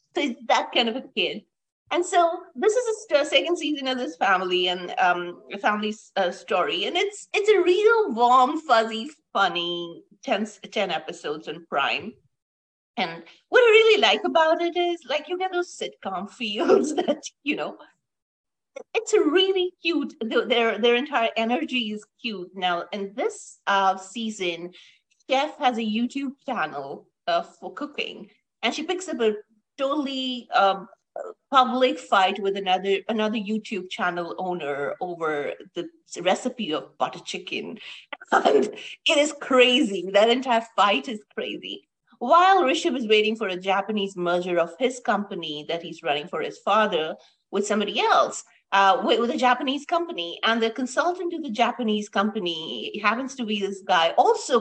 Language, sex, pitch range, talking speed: English, female, 195-295 Hz, 160 wpm